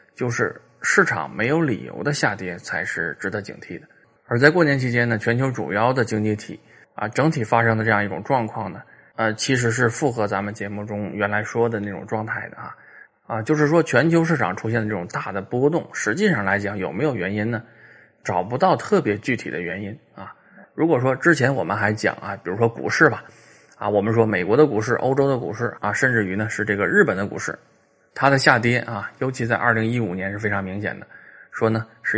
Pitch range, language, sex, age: 100-125 Hz, Chinese, male, 20-39